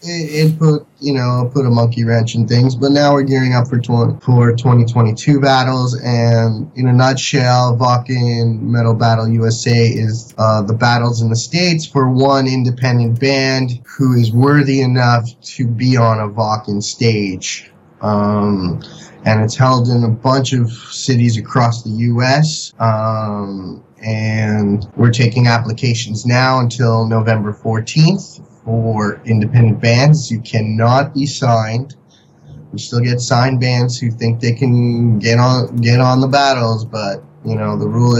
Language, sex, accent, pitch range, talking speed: English, male, American, 115-130 Hz, 150 wpm